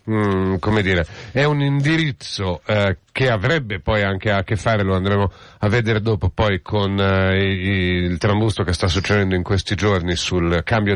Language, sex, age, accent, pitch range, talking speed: Italian, male, 50-69, native, 90-110 Hz, 175 wpm